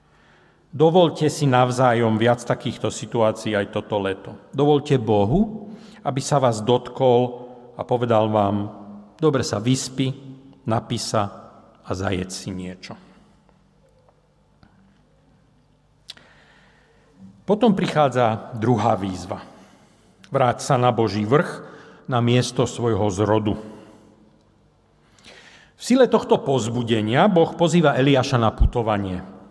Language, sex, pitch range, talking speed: Slovak, male, 110-150 Hz, 100 wpm